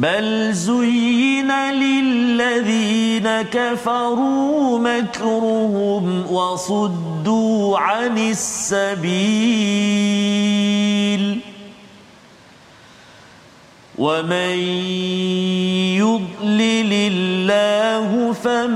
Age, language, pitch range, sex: 40-59, Malayalam, 185-225 Hz, male